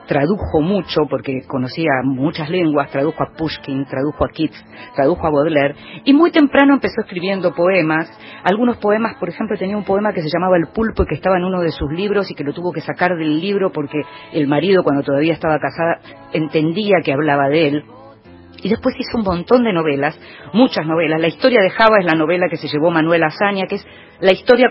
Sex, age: female, 40-59